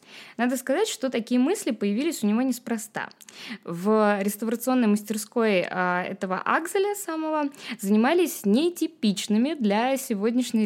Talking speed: 105 wpm